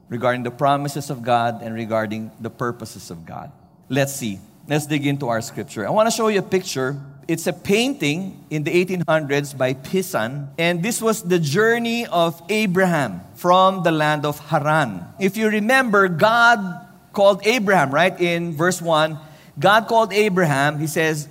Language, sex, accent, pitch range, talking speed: English, male, Filipino, 150-210 Hz, 170 wpm